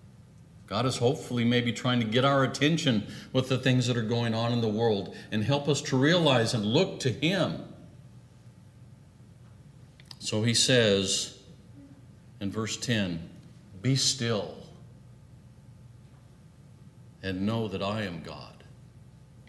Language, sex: English, male